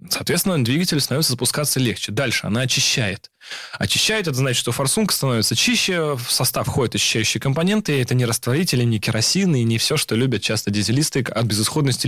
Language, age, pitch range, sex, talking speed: Russian, 20-39, 115-150 Hz, male, 175 wpm